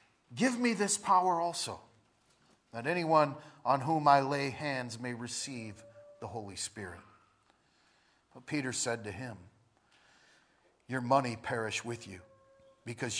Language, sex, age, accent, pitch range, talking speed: English, male, 40-59, American, 115-160 Hz, 125 wpm